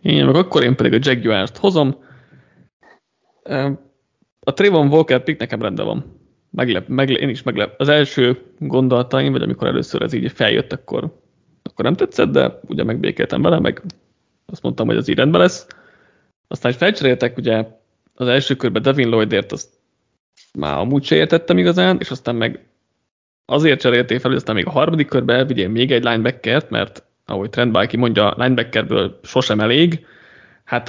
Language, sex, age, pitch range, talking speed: Hungarian, male, 30-49, 120-140 Hz, 165 wpm